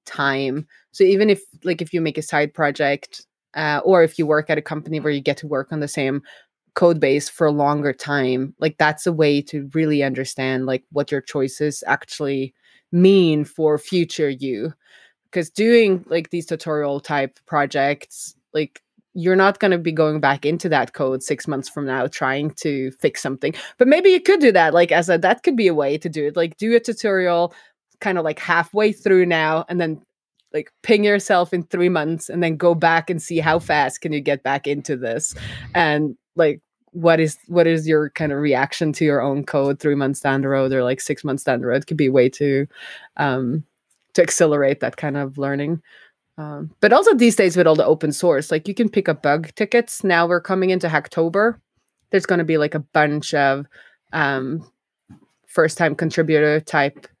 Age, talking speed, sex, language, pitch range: 20-39, 205 wpm, female, English, 140-175 Hz